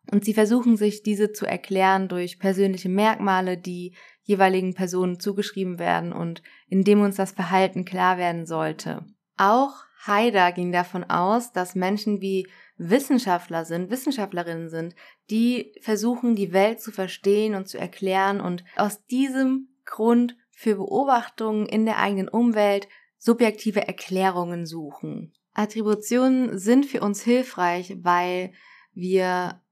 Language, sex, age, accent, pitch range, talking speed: German, female, 20-39, German, 185-220 Hz, 130 wpm